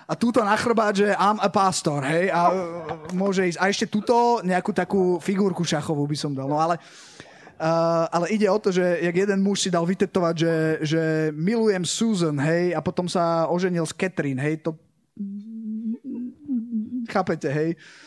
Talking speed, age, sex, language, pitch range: 165 wpm, 20-39, male, Slovak, 155-185 Hz